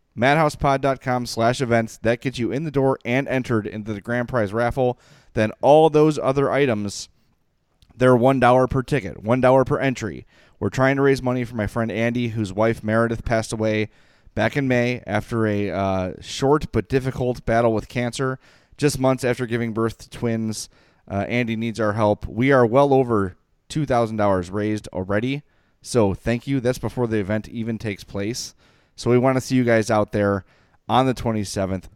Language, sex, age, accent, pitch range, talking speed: English, male, 30-49, American, 105-130 Hz, 185 wpm